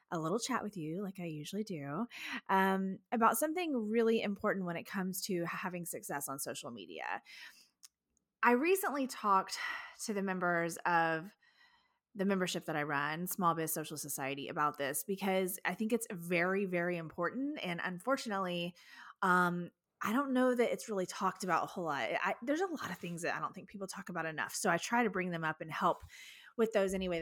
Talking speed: 195 wpm